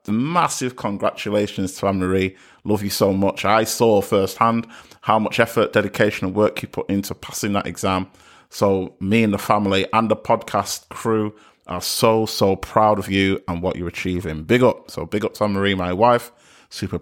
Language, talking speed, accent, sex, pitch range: English, 185 wpm, British, male, 95-115 Hz